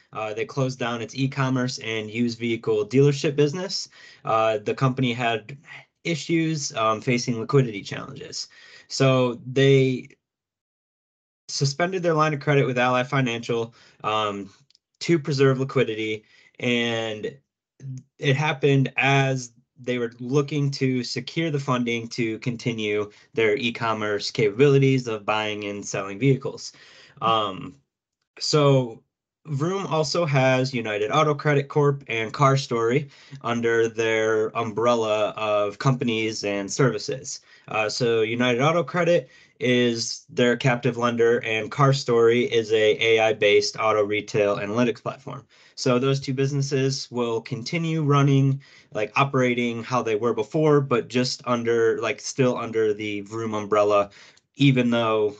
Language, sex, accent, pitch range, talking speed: English, male, American, 110-140 Hz, 125 wpm